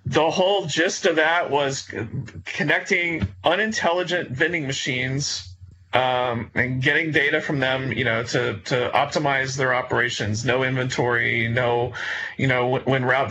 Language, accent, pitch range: English, American, 130-170 Hz